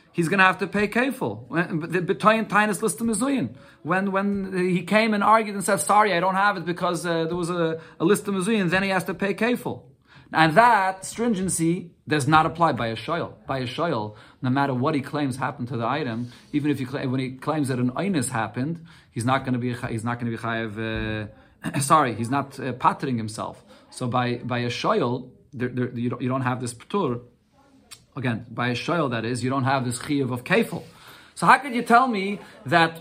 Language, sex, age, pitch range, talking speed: English, male, 30-49, 130-190 Hz, 210 wpm